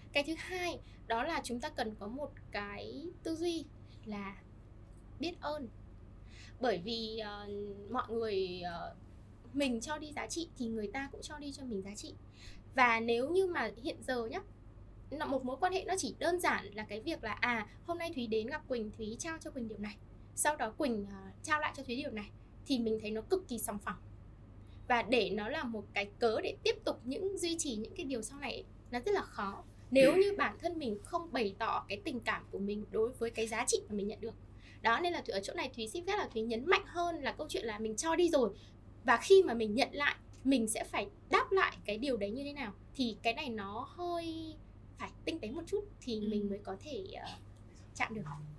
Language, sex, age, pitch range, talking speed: Vietnamese, female, 10-29, 210-305 Hz, 235 wpm